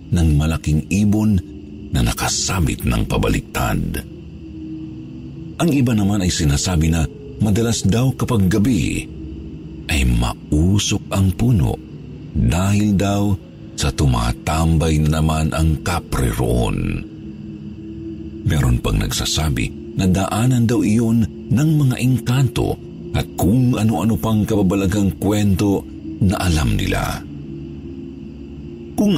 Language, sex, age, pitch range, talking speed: Filipino, male, 50-69, 75-105 Hz, 100 wpm